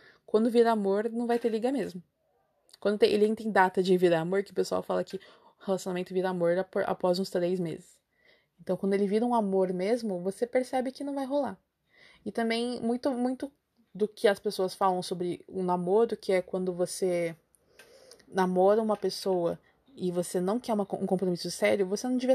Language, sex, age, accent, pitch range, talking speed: Portuguese, female, 20-39, Brazilian, 185-230 Hz, 190 wpm